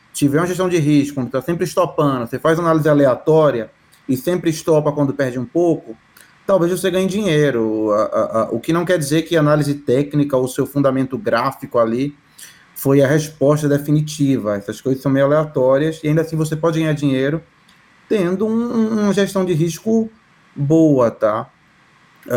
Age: 20-39